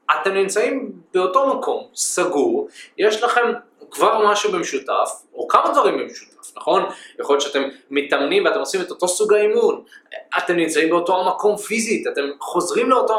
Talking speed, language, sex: 150 wpm, Hebrew, male